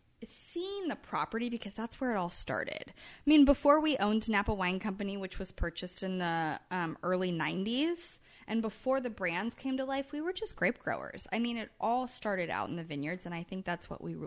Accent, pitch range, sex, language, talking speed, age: American, 170-220 Hz, female, English, 220 wpm, 20-39